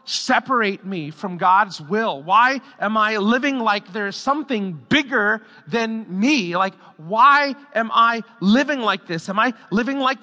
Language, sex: English, male